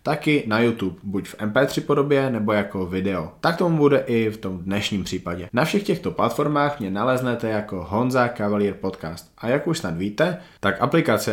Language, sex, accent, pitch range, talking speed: Czech, male, native, 100-130 Hz, 185 wpm